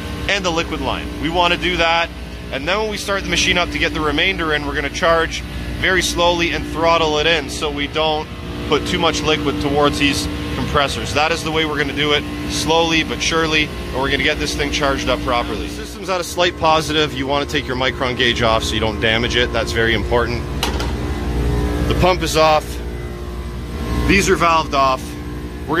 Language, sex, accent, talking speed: English, male, American, 220 wpm